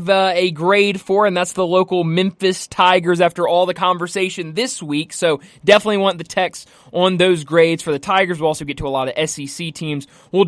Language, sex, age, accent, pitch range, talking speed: English, male, 20-39, American, 150-195 Hz, 205 wpm